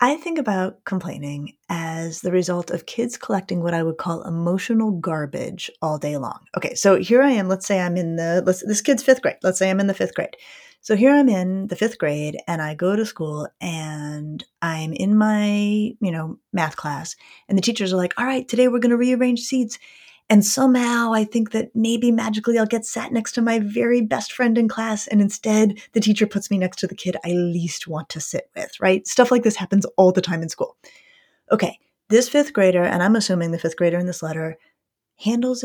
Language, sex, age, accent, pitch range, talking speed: English, female, 30-49, American, 175-245 Hz, 220 wpm